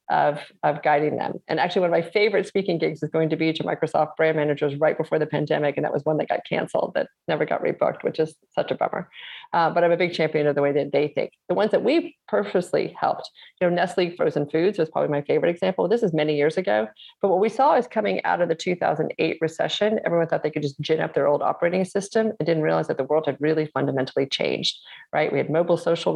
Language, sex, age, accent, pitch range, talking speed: English, female, 40-59, American, 150-175 Hz, 250 wpm